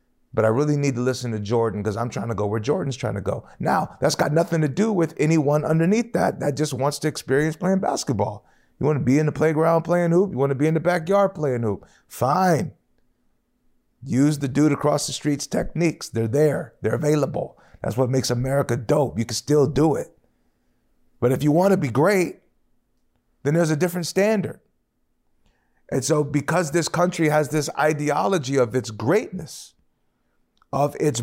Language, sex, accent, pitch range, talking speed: English, male, American, 130-175 Hz, 190 wpm